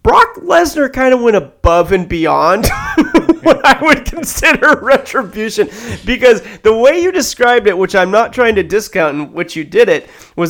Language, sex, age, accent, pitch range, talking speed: English, male, 30-49, American, 160-215 Hz, 175 wpm